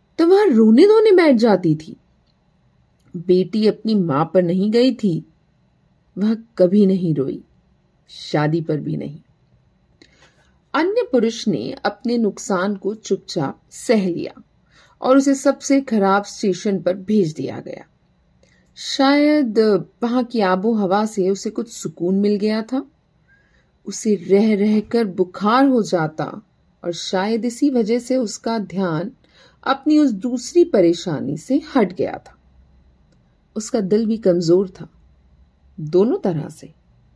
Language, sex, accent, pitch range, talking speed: Hindi, female, native, 175-235 Hz, 130 wpm